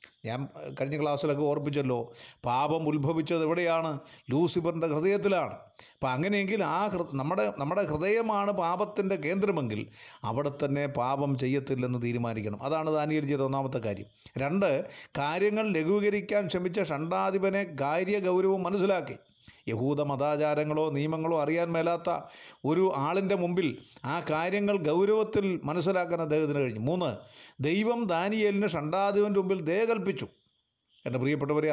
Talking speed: 100 wpm